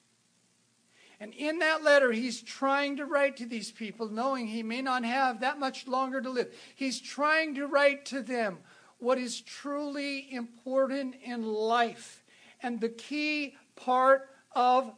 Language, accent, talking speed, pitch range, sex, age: English, American, 150 wpm, 190-260 Hz, male, 60-79